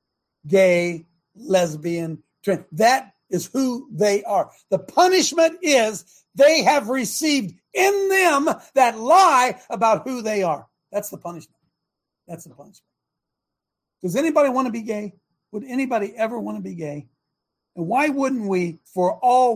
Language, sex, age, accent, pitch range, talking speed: English, male, 60-79, American, 160-230 Hz, 145 wpm